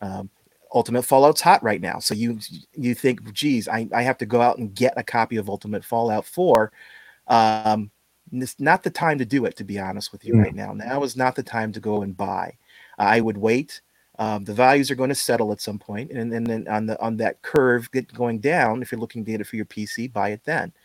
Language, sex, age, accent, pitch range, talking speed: English, male, 30-49, American, 105-125 Hz, 240 wpm